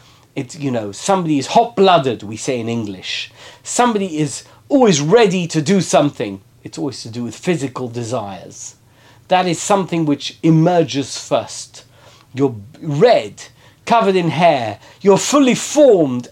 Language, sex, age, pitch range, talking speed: English, male, 50-69, 120-175 Hz, 140 wpm